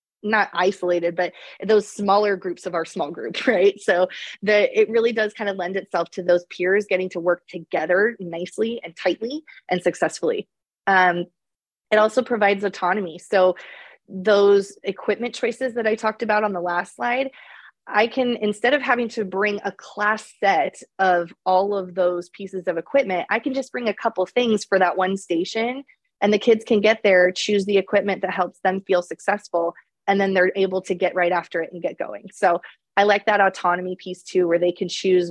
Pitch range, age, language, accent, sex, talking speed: 180-220 Hz, 20-39, English, American, female, 190 wpm